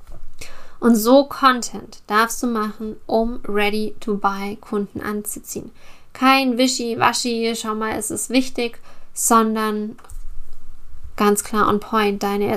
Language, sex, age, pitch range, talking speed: English, female, 10-29, 205-230 Hz, 110 wpm